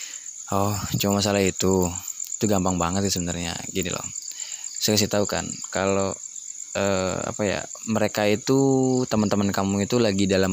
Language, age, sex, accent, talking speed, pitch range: Indonesian, 20-39, male, native, 150 wpm, 95-105 Hz